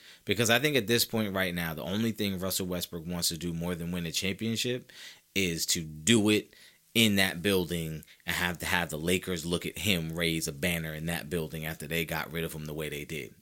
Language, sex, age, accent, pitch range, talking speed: English, male, 30-49, American, 85-120 Hz, 235 wpm